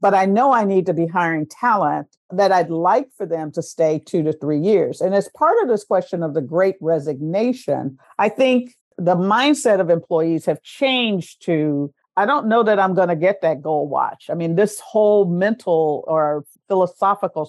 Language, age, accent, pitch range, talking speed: English, 50-69, American, 155-190 Hz, 195 wpm